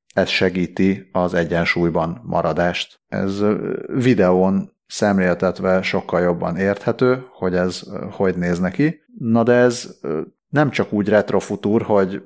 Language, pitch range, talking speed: Hungarian, 90-105 Hz, 115 wpm